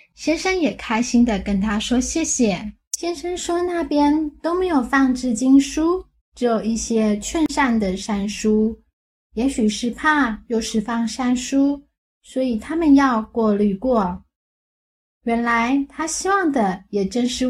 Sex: female